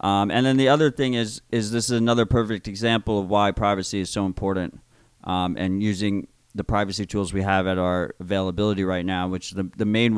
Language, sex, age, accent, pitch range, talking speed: English, male, 30-49, American, 100-120 Hz, 210 wpm